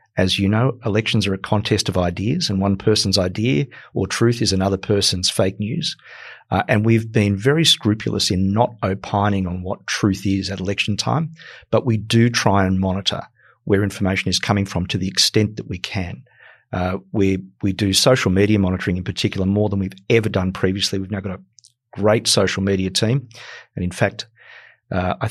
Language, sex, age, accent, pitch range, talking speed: English, male, 40-59, Australian, 95-110 Hz, 190 wpm